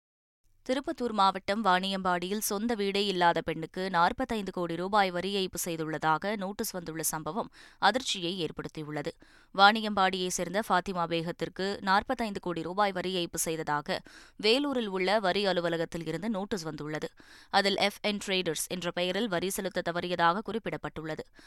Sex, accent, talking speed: female, native, 125 wpm